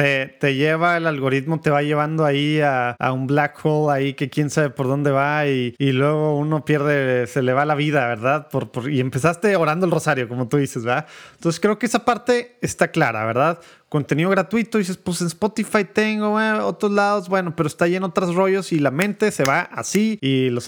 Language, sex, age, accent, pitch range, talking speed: Spanish, male, 30-49, Mexican, 130-165 Hz, 220 wpm